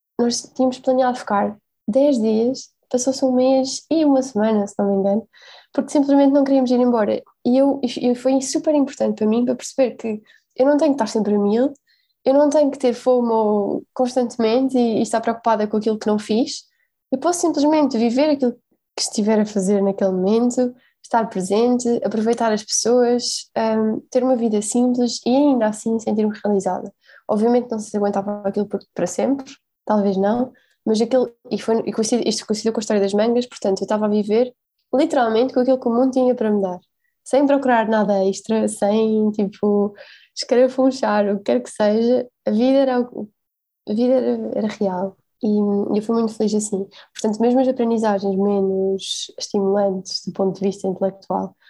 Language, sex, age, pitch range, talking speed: Portuguese, female, 20-39, 210-255 Hz, 175 wpm